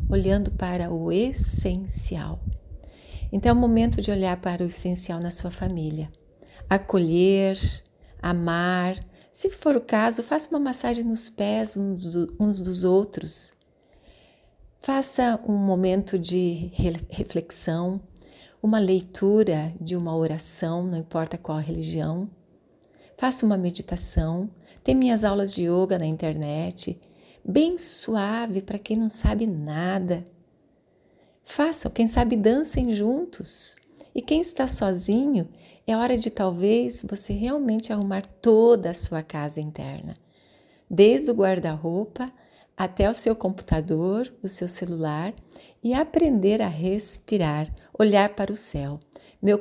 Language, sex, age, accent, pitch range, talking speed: Portuguese, female, 40-59, Brazilian, 170-220 Hz, 120 wpm